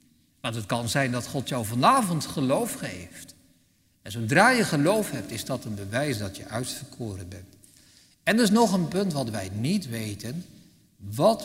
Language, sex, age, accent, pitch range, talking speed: Dutch, male, 60-79, Dutch, 100-145 Hz, 180 wpm